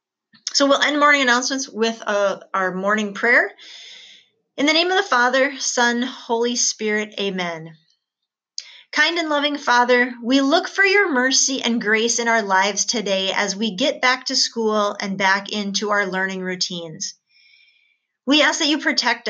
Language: English